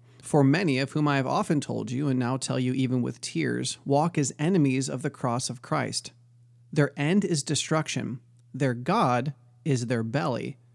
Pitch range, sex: 120-145 Hz, male